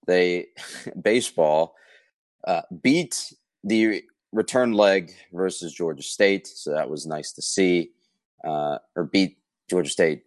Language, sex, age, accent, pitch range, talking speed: English, male, 30-49, American, 80-110 Hz, 125 wpm